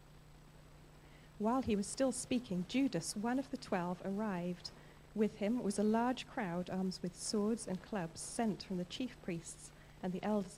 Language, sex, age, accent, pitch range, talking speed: English, female, 30-49, British, 170-220 Hz, 170 wpm